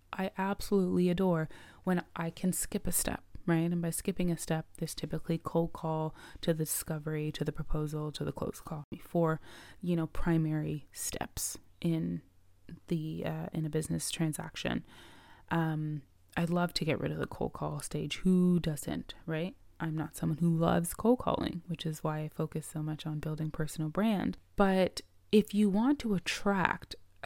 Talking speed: 175 wpm